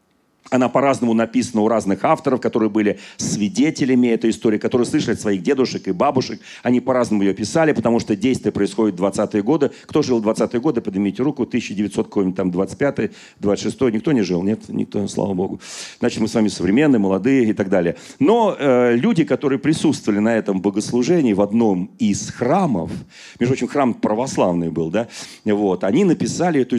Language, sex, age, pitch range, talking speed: Russian, male, 40-59, 100-130 Hz, 170 wpm